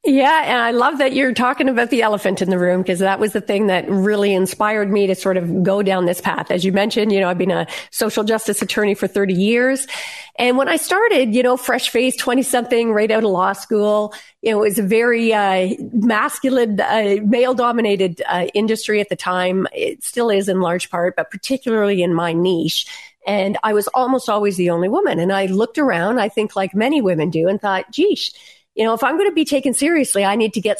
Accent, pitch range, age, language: American, 195-255 Hz, 40-59, English